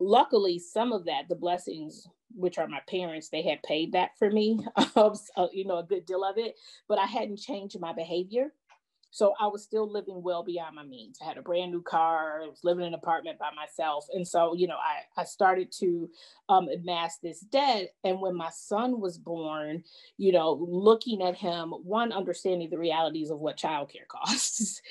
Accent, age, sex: American, 30-49, female